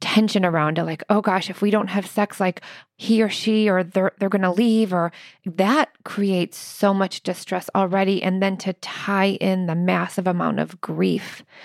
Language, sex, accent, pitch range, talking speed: English, female, American, 180-205 Hz, 190 wpm